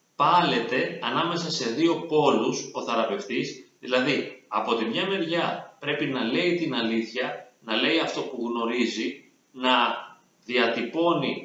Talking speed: 125 wpm